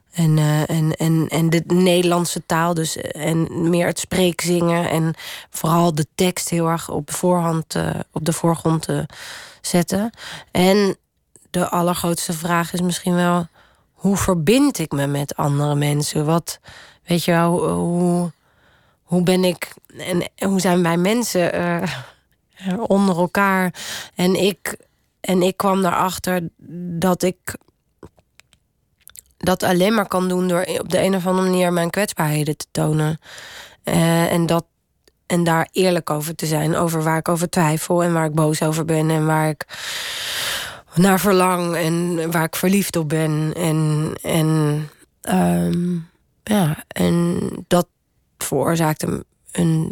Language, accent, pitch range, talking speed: Dutch, Dutch, 160-180 Hz, 150 wpm